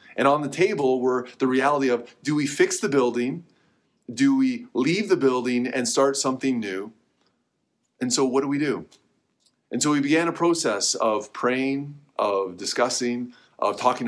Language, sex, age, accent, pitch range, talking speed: English, male, 30-49, American, 120-150 Hz, 170 wpm